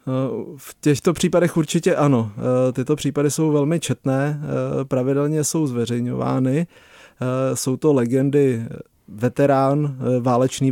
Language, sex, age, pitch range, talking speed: Czech, male, 30-49, 125-145 Hz, 100 wpm